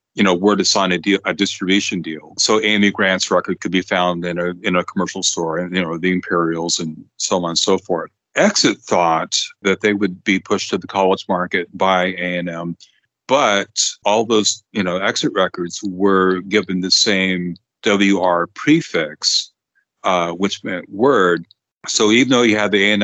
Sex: male